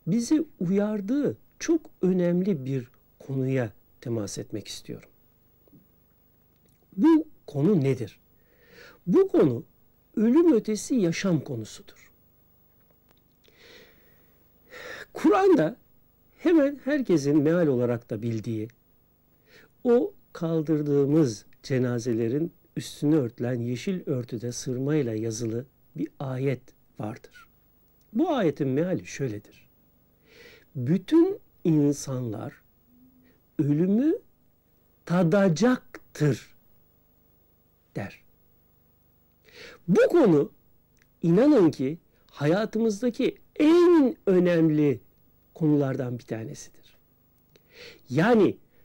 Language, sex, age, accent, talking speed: Turkish, male, 60-79, native, 70 wpm